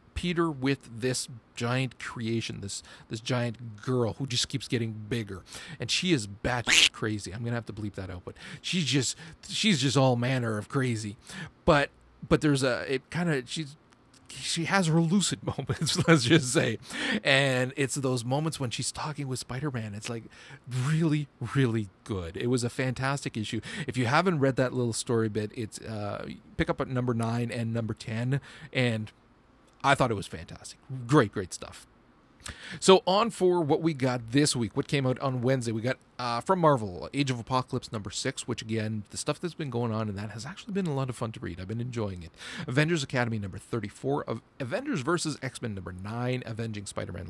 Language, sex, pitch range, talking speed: English, male, 115-145 Hz, 200 wpm